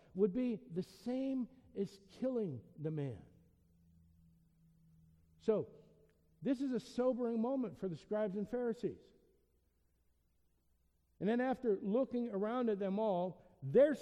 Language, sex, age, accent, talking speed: English, male, 60-79, American, 120 wpm